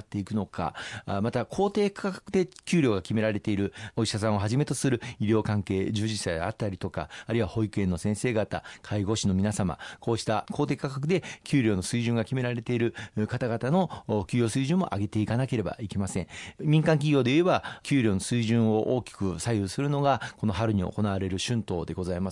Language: Japanese